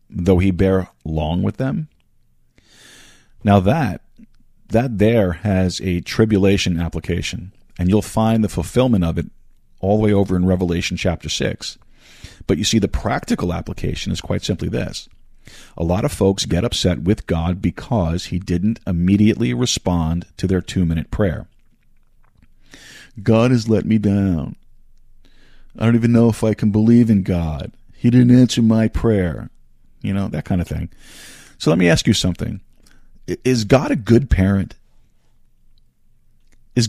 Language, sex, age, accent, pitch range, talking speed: English, male, 40-59, American, 90-115 Hz, 155 wpm